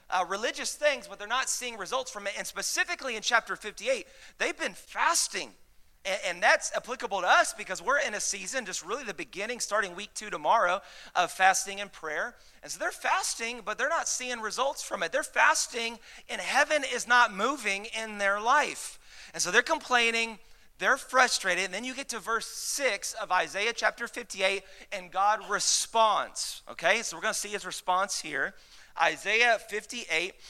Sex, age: male, 30-49